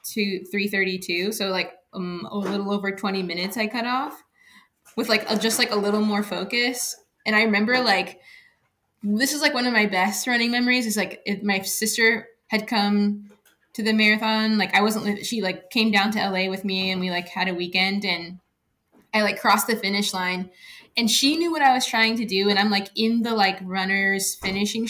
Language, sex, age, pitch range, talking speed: English, female, 10-29, 195-235 Hz, 210 wpm